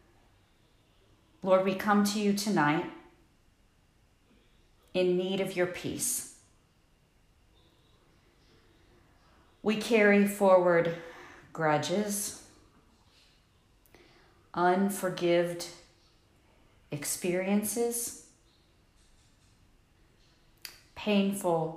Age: 40-59